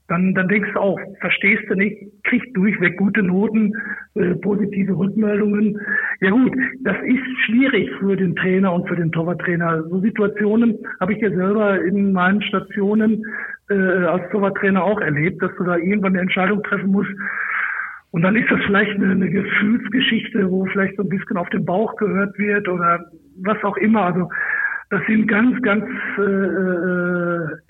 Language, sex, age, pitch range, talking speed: German, male, 60-79, 180-210 Hz, 165 wpm